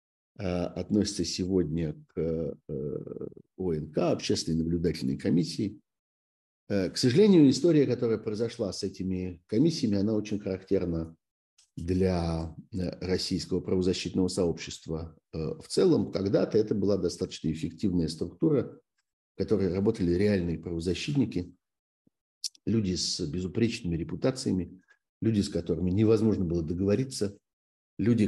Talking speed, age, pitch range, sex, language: 100 wpm, 50-69, 85-110 Hz, male, Russian